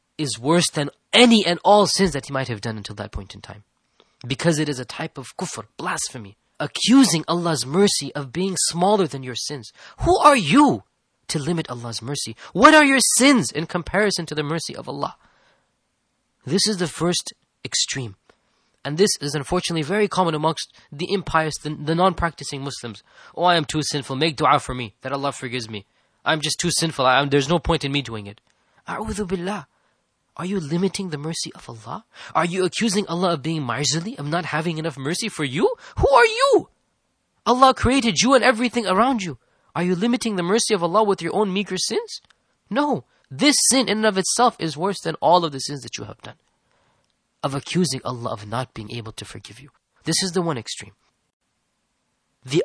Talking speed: 200 wpm